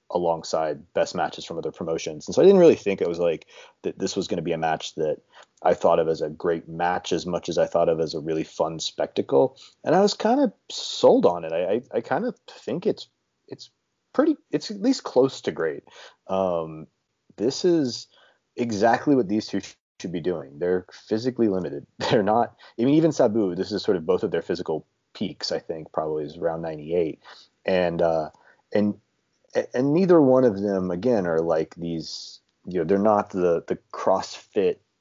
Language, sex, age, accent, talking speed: English, male, 30-49, American, 200 wpm